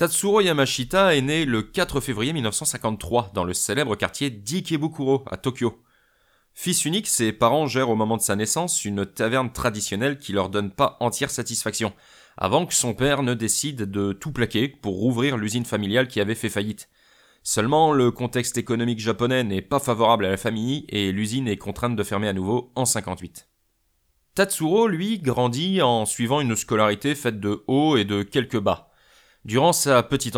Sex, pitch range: male, 105-140 Hz